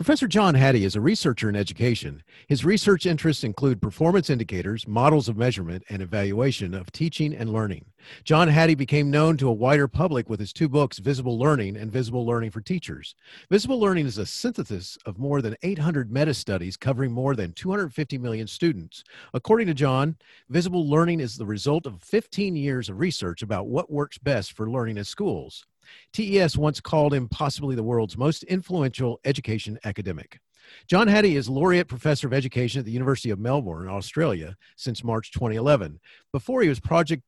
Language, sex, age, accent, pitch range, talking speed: English, male, 40-59, American, 115-155 Hz, 175 wpm